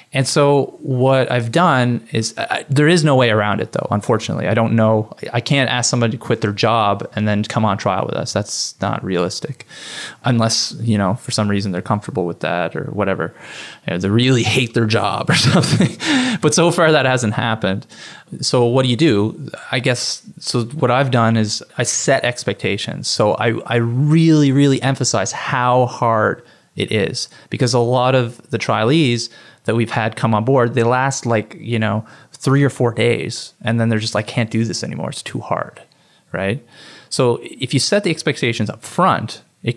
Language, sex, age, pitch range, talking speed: English, male, 20-39, 110-135 Hz, 195 wpm